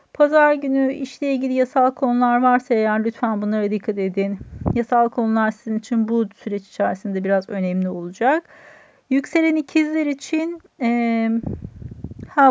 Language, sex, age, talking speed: Turkish, female, 40-59, 130 wpm